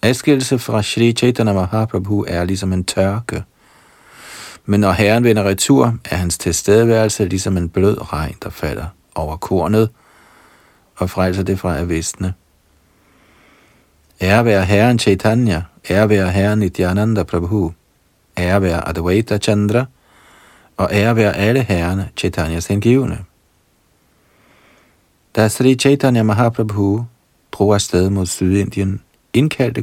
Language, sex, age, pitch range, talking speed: Danish, male, 50-69, 95-115 Hz, 120 wpm